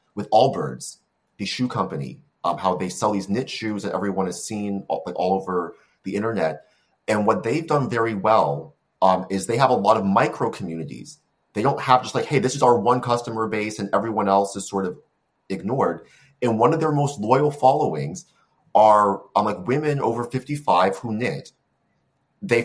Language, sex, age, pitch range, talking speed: English, male, 30-49, 100-130 Hz, 190 wpm